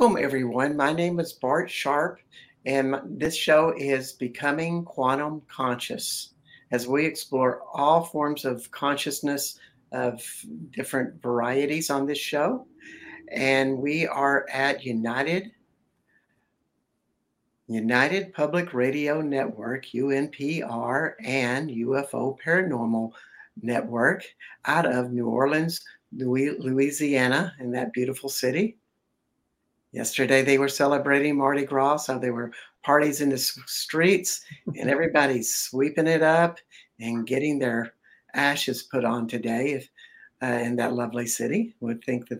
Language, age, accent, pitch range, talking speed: English, 60-79, American, 125-150 Hz, 115 wpm